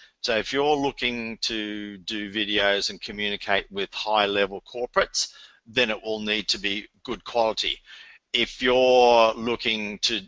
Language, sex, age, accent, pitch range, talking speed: English, male, 50-69, Australian, 105-125 Hz, 145 wpm